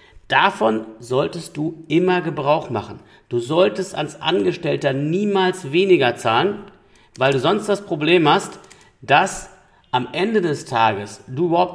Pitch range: 135-180 Hz